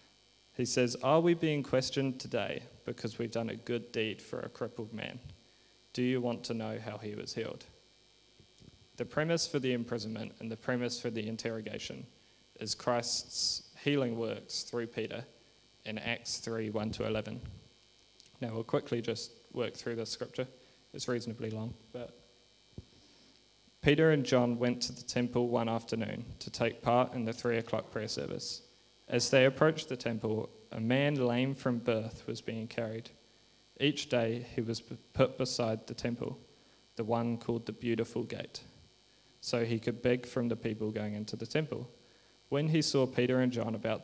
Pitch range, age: 115-125 Hz, 20-39